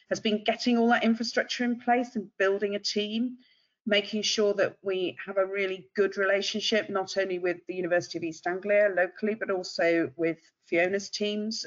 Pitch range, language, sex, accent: 175-220 Hz, English, female, British